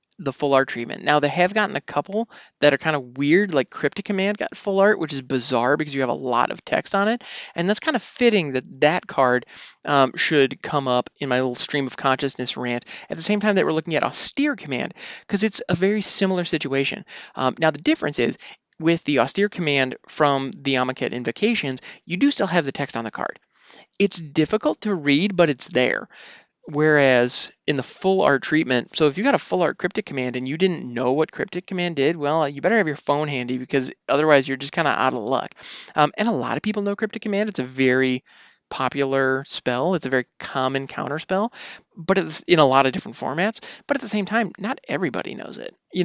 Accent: American